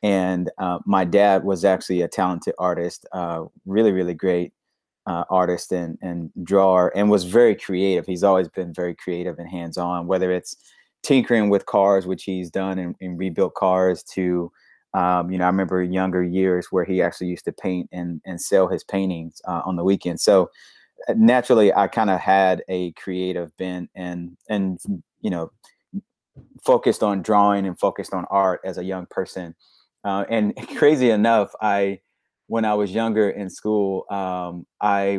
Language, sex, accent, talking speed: English, male, American, 175 wpm